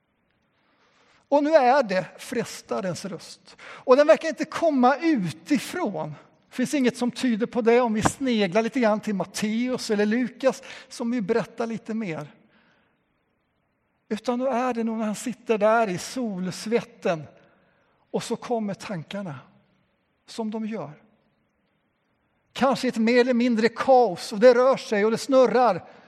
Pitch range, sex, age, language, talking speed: 195-260 Hz, male, 60-79, Swedish, 145 wpm